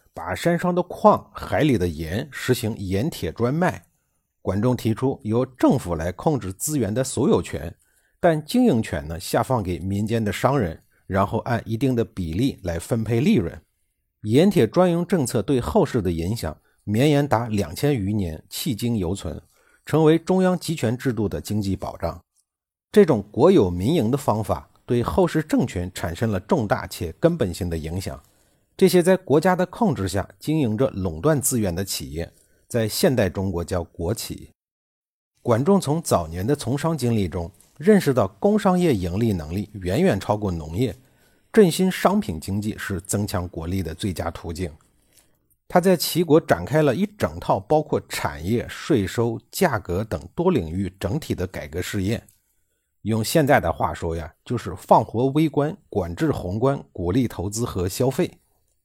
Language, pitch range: Chinese, 95-145 Hz